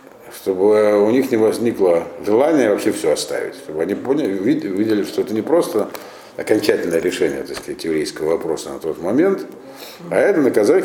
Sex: male